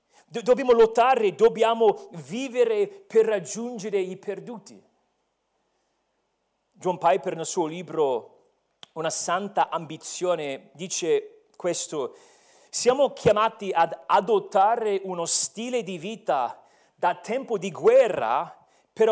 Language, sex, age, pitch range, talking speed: Italian, male, 40-59, 185-240 Hz, 95 wpm